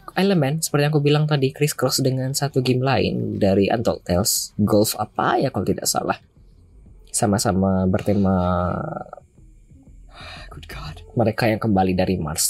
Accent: native